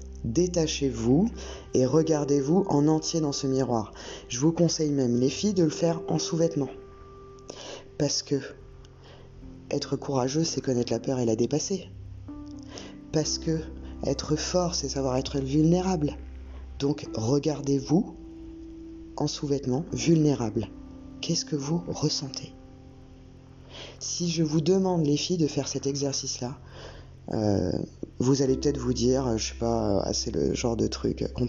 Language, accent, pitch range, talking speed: French, French, 115-155 Hz, 135 wpm